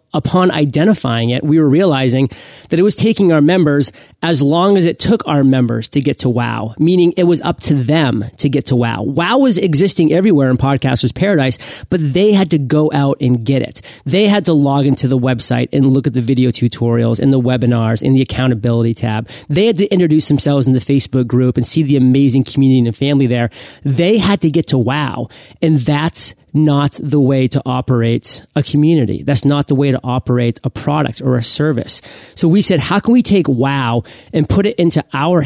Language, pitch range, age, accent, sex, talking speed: English, 130-165 Hz, 30-49, American, male, 210 wpm